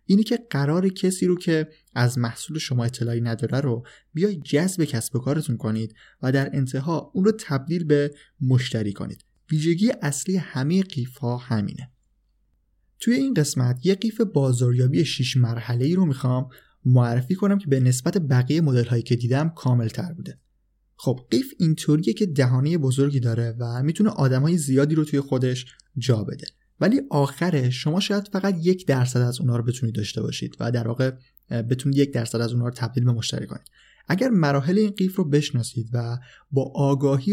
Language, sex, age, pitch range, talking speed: Persian, male, 20-39, 120-160 Hz, 170 wpm